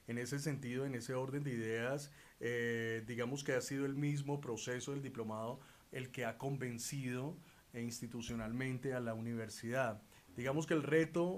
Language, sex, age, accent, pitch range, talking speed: Spanish, male, 30-49, Colombian, 115-140 Hz, 160 wpm